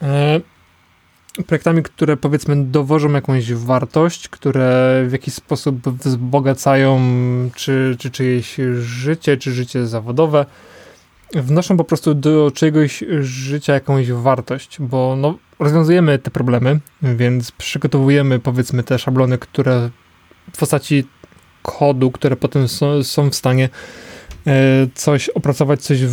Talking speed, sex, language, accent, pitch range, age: 115 wpm, male, Polish, native, 130-150 Hz, 20-39